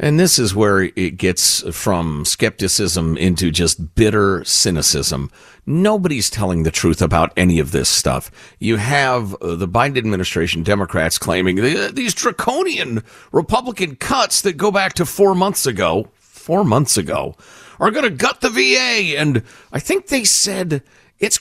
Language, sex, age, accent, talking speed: English, male, 50-69, American, 150 wpm